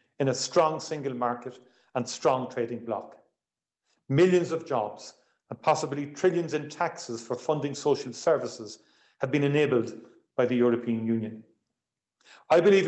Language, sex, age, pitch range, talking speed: English, male, 40-59, 130-170 Hz, 140 wpm